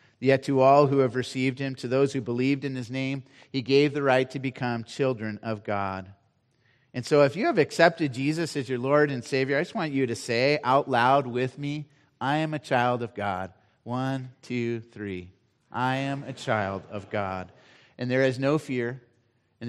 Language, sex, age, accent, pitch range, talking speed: English, male, 30-49, American, 120-140 Hz, 200 wpm